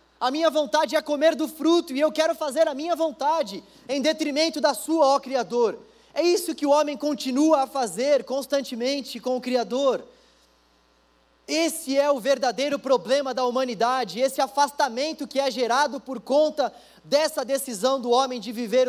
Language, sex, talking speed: Portuguese, male, 165 wpm